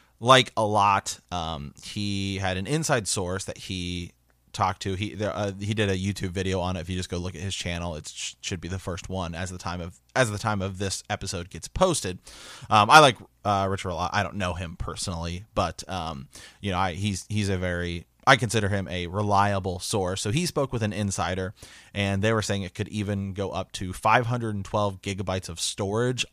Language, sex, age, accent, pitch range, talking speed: English, male, 30-49, American, 90-105 Hz, 220 wpm